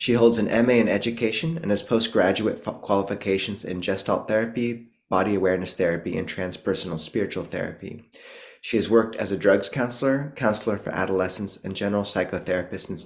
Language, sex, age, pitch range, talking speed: English, male, 20-39, 95-115 Hz, 155 wpm